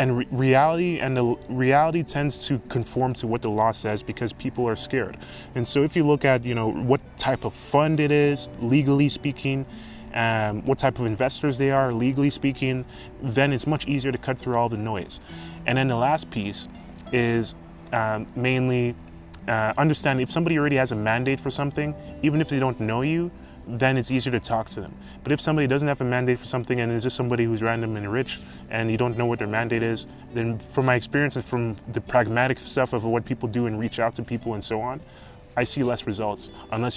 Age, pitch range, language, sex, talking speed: 20-39, 105-130 Hz, English, male, 220 wpm